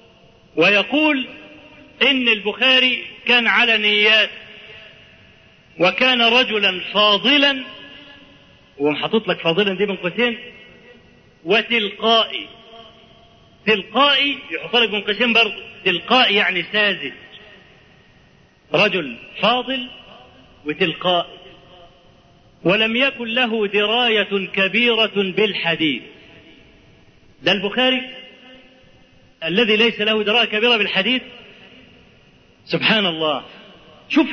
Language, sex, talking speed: Arabic, male, 75 wpm